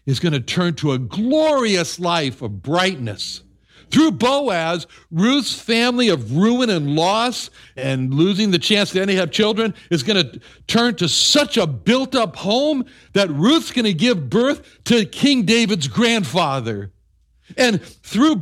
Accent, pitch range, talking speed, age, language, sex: American, 145-230 Hz, 155 wpm, 60-79, English, male